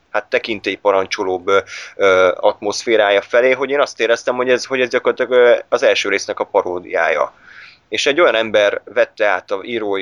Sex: male